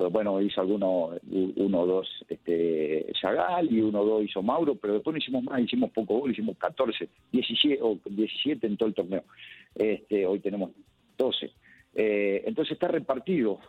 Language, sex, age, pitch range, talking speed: Spanish, male, 50-69, 100-130 Hz, 165 wpm